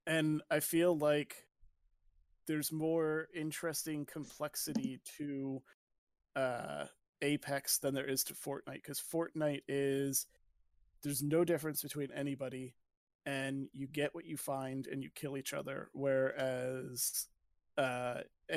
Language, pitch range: English, 135-150 Hz